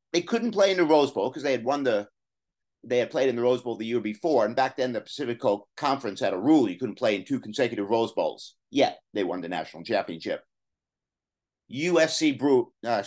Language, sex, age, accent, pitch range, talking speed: English, male, 50-69, American, 120-150 Hz, 220 wpm